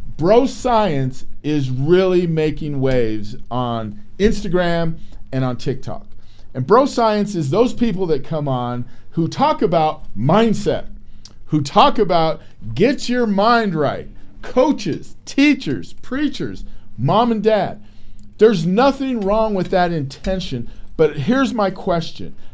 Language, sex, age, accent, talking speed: English, male, 50-69, American, 125 wpm